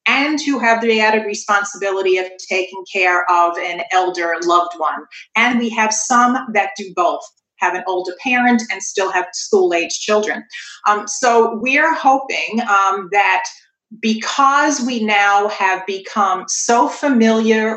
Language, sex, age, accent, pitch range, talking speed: English, female, 40-59, American, 200-240 Hz, 150 wpm